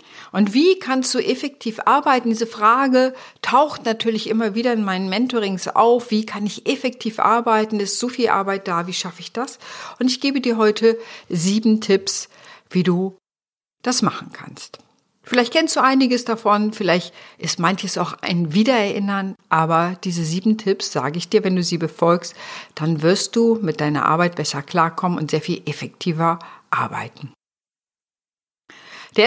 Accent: German